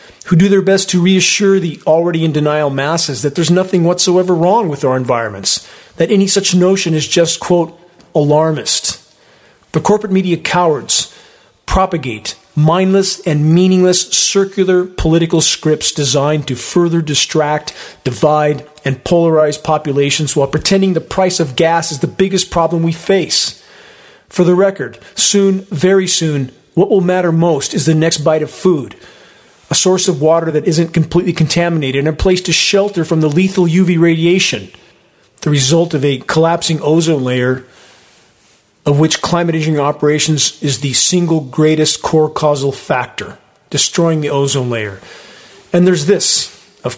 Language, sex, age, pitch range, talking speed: English, male, 40-59, 150-180 Hz, 150 wpm